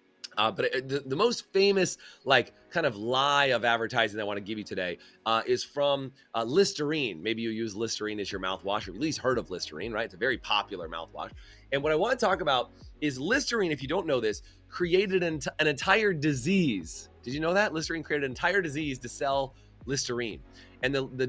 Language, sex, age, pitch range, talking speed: English, male, 30-49, 115-150 Hz, 215 wpm